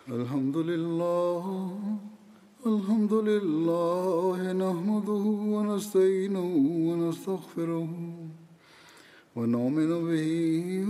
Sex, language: male, Bulgarian